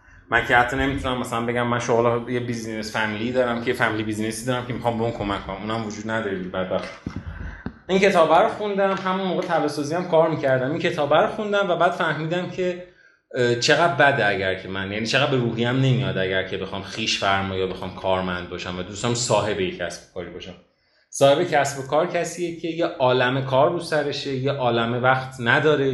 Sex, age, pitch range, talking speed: male, 30-49, 105-140 Hz, 195 wpm